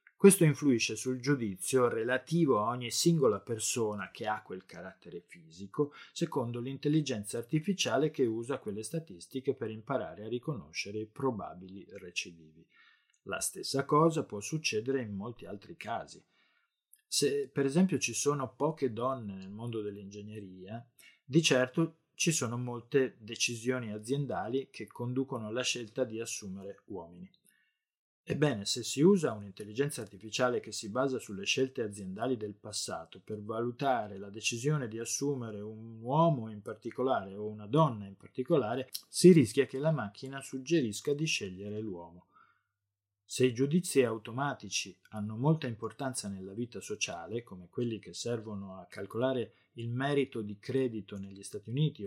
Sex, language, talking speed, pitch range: male, Italian, 140 wpm, 105-135 Hz